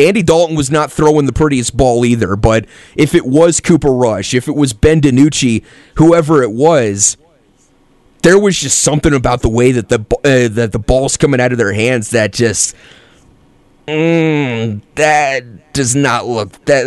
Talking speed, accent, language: 165 wpm, American, English